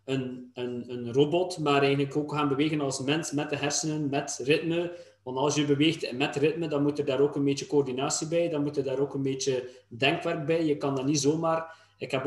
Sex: male